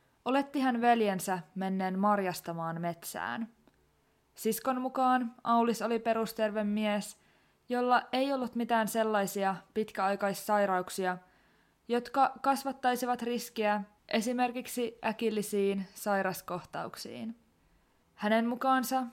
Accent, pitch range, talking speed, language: native, 195-235 Hz, 80 wpm, Finnish